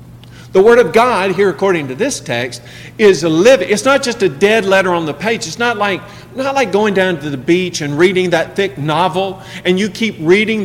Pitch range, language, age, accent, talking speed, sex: 155-215 Hz, English, 50-69, American, 220 wpm, male